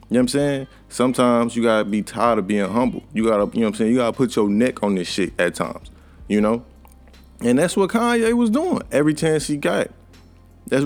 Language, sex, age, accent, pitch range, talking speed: English, male, 20-39, American, 95-125 Hz, 255 wpm